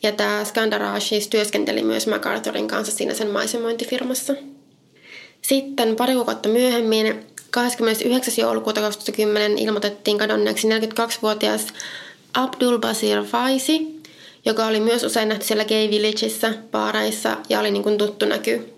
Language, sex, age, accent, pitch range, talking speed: Finnish, female, 20-39, native, 200-235 Hz, 110 wpm